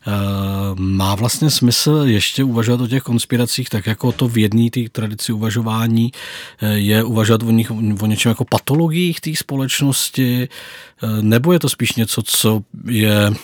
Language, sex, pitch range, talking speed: Czech, male, 110-140 Hz, 145 wpm